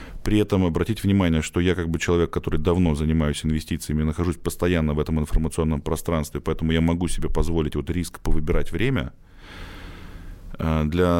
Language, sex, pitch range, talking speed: Russian, male, 80-95 Hz, 155 wpm